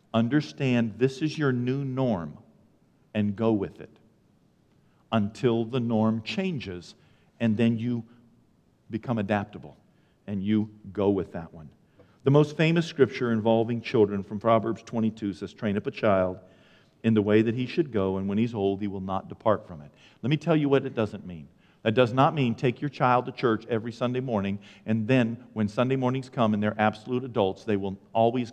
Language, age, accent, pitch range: English, 50-69, American, 110-150 Hz